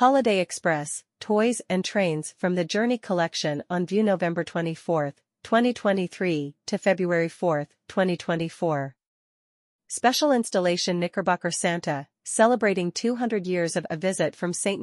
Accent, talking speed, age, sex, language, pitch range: American, 120 wpm, 40-59, female, English, 165-200 Hz